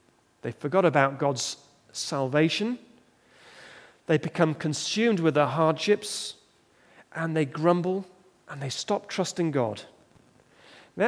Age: 30-49